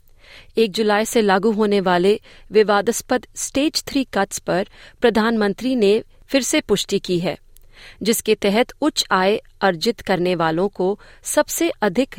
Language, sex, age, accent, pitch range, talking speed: Hindi, female, 30-49, native, 180-225 Hz, 140 wpm